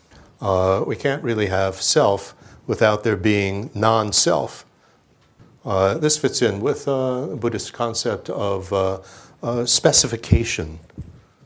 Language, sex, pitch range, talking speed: English, male, 95-125 Hz, 110 wpm